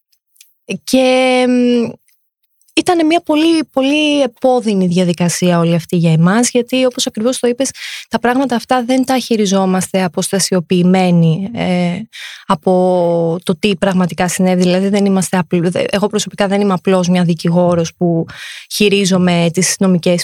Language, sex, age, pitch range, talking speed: Greek, female, 20-39, 185-265 Hz, 130 wpm